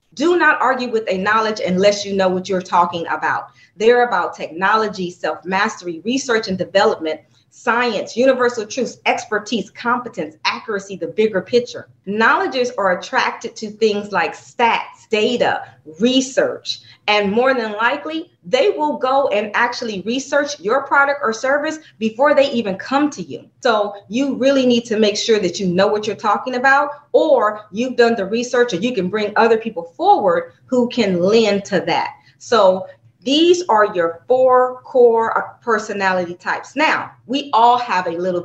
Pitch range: 190-250 Hz